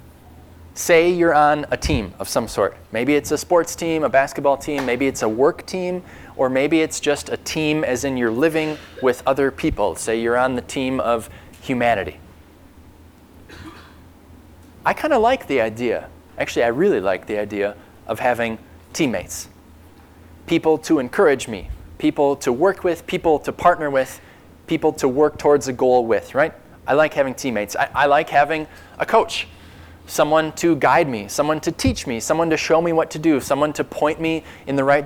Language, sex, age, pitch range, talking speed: English, male, 20-39, 95-150 Hz, 185 wpm